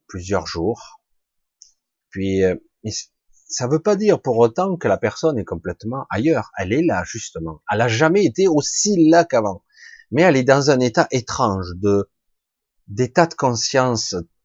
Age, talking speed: 30-49, 155 wpm